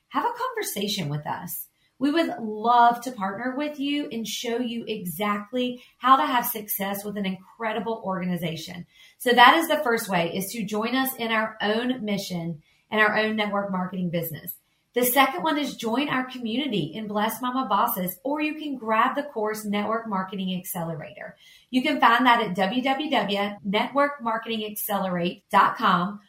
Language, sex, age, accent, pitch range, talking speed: English, female, 40-59, American, 195-265 Hz, 160 wpm